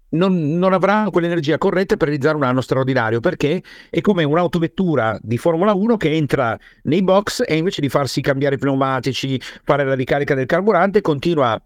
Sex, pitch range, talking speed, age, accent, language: male, 125-190 Hz, 175 wpm, 50-69, native, Italian